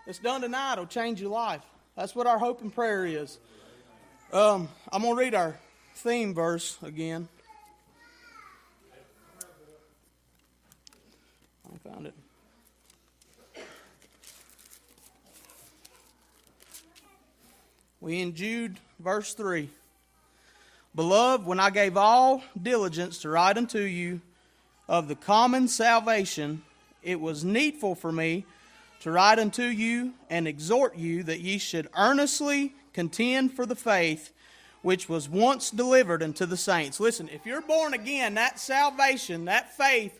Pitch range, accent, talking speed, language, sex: 180-245 Hz, American, 120 wpm, English, male